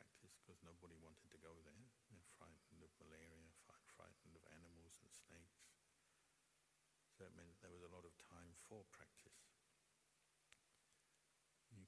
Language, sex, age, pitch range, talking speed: English, male, 60-79, 80-90 Hz, 135 wpm